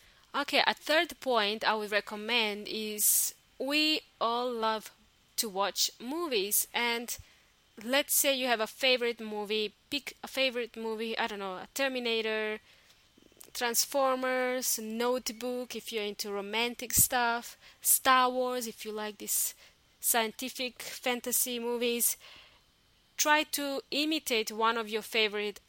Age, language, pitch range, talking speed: 20-39, English, 215-255 Hz, 125 wpm